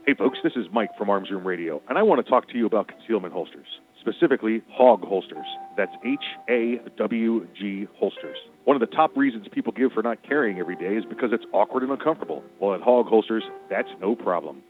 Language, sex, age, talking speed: English, male, 40-59, 205 wpm